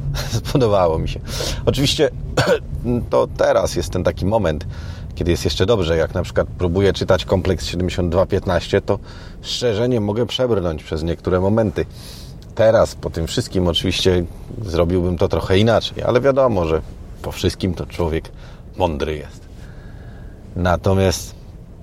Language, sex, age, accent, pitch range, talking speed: Polish, male, 40-59, native, 85-100 Hz, 130 wpm